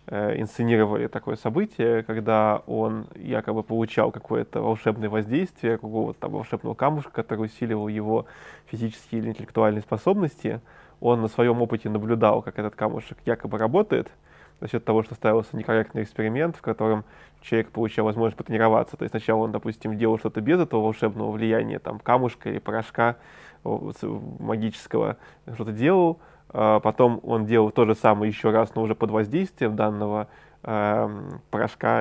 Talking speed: 140 wpm